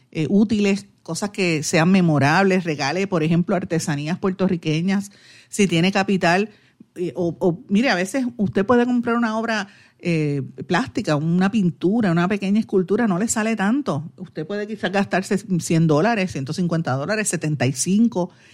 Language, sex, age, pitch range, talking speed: Spanish, female, 50-69, 160-205 Hz, 145 wpm